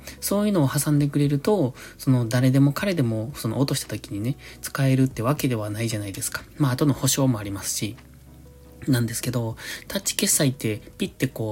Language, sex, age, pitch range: Japanese, male, 20-39, 115-155 Hz